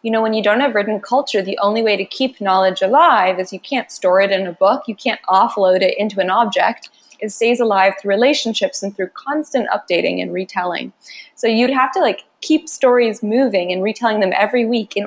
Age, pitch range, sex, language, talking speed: 20-39, 195-240 Hz, female, English, 220 wpm